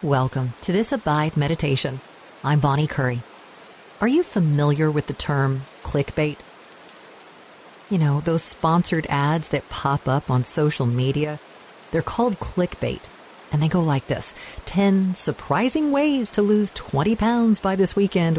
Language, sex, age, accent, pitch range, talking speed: English, female, 50-69, American, 140-195 Hz, 145 wpm